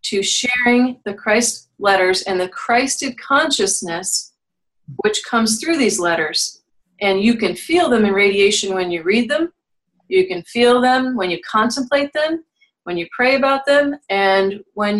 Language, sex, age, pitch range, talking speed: English, female, 40-59, 190-255 Hz, 160 wpm